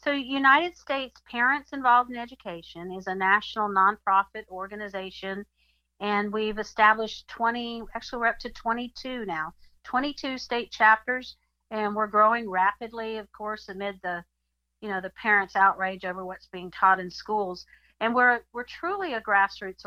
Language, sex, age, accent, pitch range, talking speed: English, female, 50-69, American, 190-230 Hz, 150 wpm